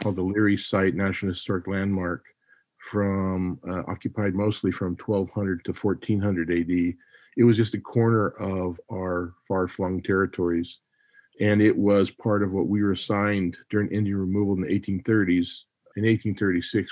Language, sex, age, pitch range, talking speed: English, male, 40-59, 90-105 Hz, 150 wpm